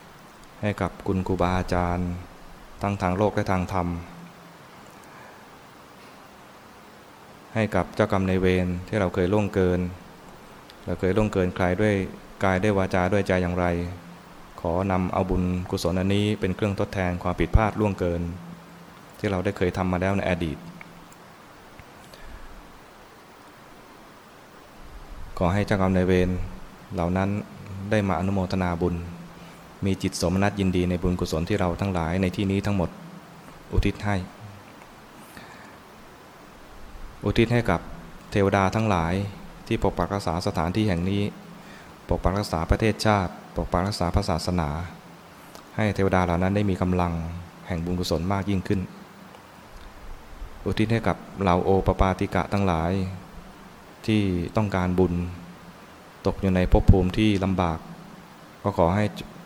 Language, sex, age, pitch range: English, male, 20-39, 90-100 Hz